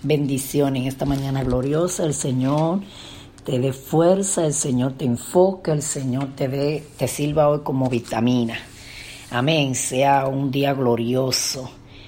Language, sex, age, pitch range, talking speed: Spanish, female, 40-59, 115-135 Hz, 135 wpm